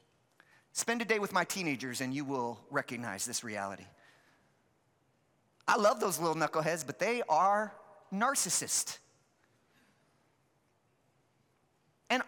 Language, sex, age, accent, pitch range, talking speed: English, male, 30-49, American, 160-240 Hz, 105 wpm